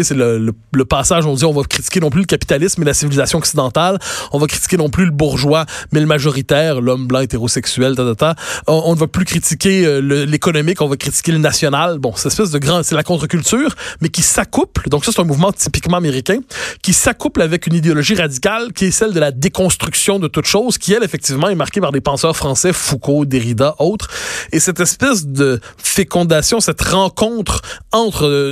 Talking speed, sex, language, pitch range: 210 wpm, male, French, 145-190 Hz